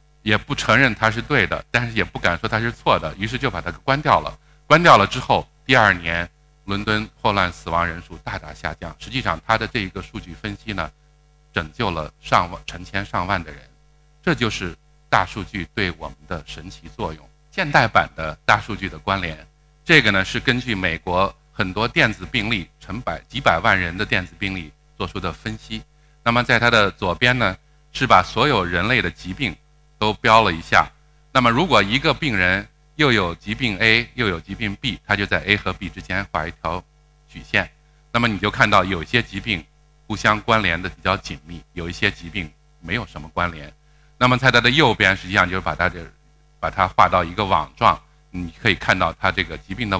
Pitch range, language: 90-125 Hz, Chinese